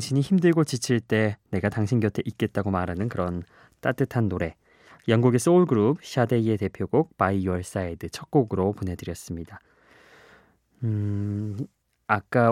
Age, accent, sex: 20-39, native, male